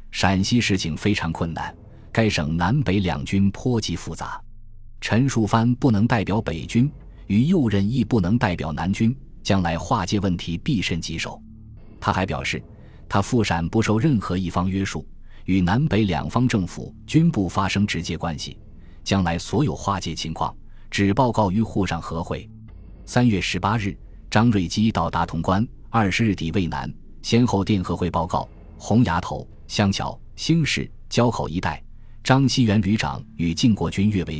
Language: Chinese